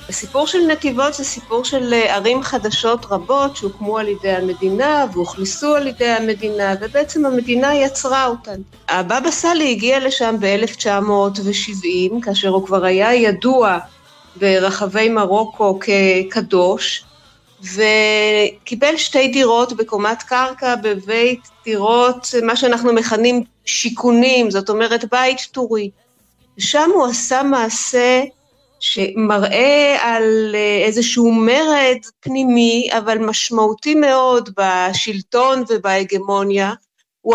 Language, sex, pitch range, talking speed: Hebrew, female, 205-255 Hz, 105 wpm